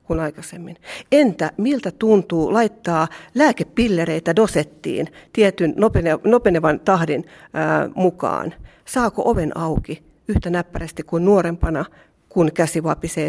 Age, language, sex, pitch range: 40-59, Finnish, female, 160-190 Hz